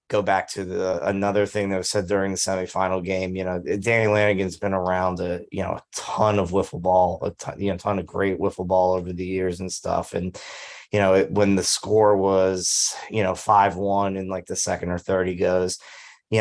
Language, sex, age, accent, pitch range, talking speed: English, male, 30-49, American, 95-105 Hz, 220 wpm